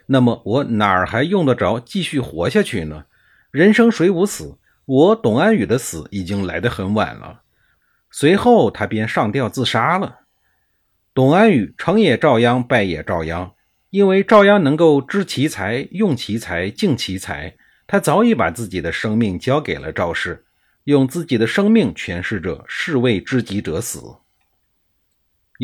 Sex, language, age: male, Chinese, 50-69